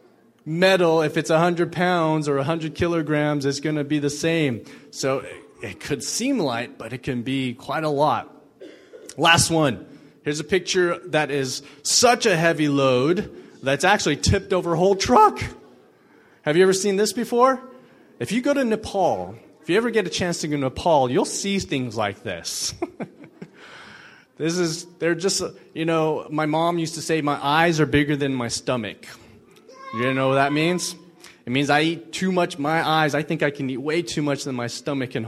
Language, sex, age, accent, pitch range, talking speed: English, male, 30-49, American, 135-175 Hz, 190 wpm